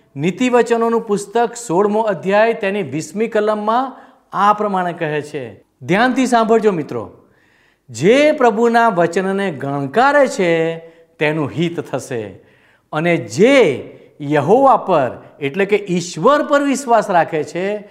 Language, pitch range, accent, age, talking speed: Gujarati, 165-245 Hz, native, 50-69, 110 wpm